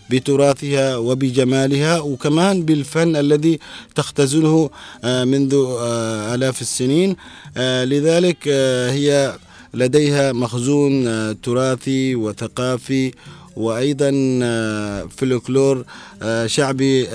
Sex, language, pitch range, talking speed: male, Arabic, 110-135 Hz, 70 wpm